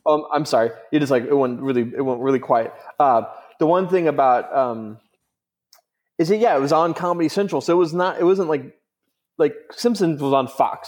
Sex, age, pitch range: male, 20-39, 125-160 Hz